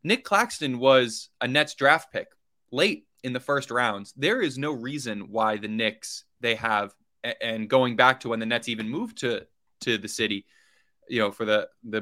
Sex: male